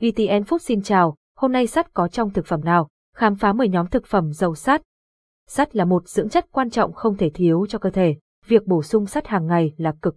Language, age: Vietnamese, 20-39